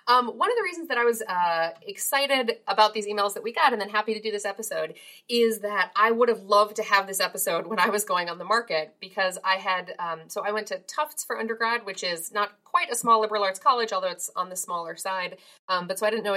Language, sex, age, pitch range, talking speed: English, female, 30-49, 175-220 Hz, 265 wpm